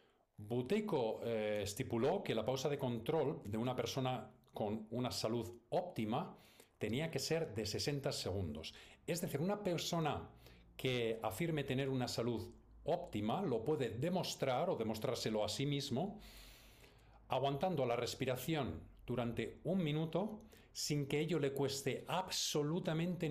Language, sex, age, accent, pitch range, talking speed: Spanish, male, 40-59, Spanish, 110-145 Hz, 130 wpm